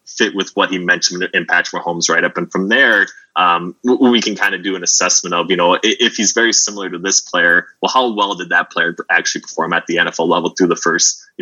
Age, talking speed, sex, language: 20-39, 245 wpm, male, English